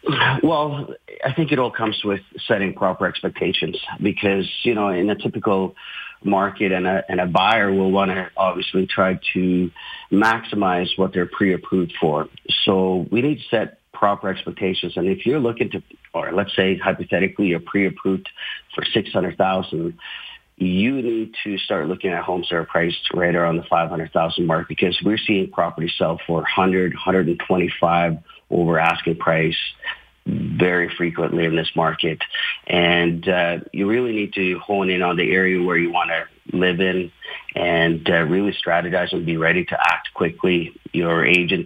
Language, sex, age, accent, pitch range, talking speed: English, male, 50-69, American, 85-100 Hz, 160 wpm